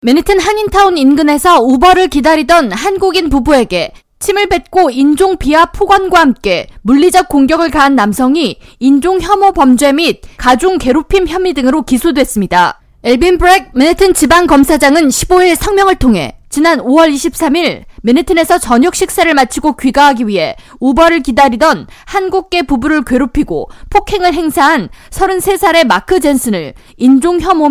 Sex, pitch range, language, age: female, 270-365 Hz, Korean, 20-39